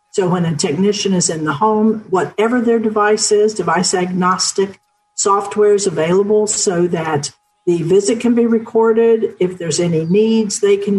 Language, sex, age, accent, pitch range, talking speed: English, female, 50-69, American, 170-215 Hz, 165 wpm